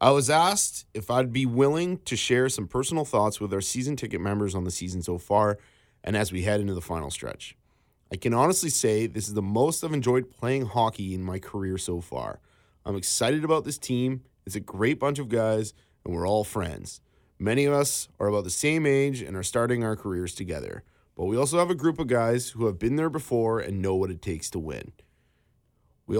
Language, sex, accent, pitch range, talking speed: English, male, American, 100-135 Hz, 220 wpm